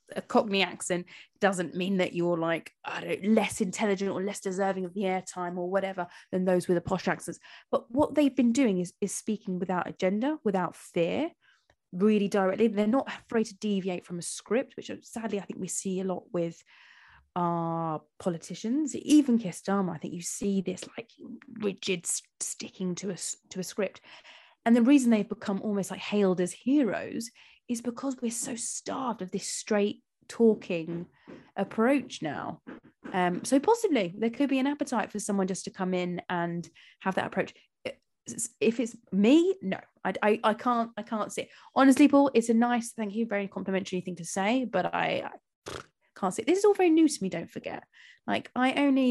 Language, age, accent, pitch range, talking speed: English, 20-39, British, 185-250 Hz, 190 wpm